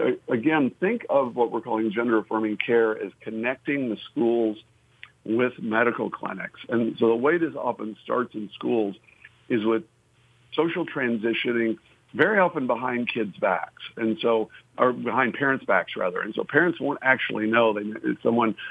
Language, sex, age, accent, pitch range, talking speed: English, male, 50-69, American, 110-130 Hz, 155 wpm